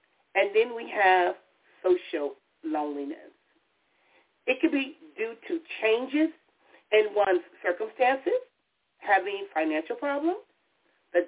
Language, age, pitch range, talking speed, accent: English, 40-59, 200-330 Hz, 100 wpm, American